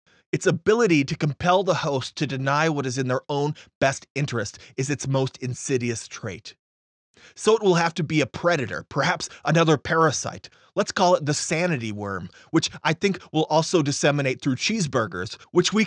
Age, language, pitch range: 30-49, English, 125-165 Hz